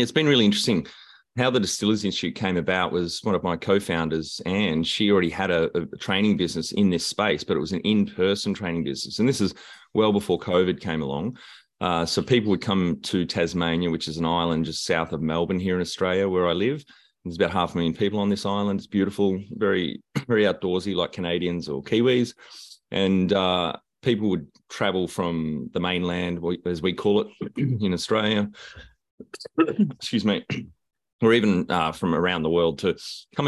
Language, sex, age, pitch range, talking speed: English, male, 30-49, 85-100 Hz, 190 wpm